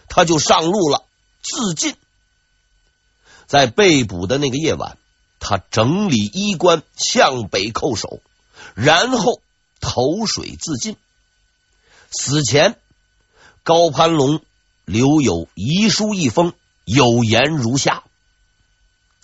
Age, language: 50-69, Chinese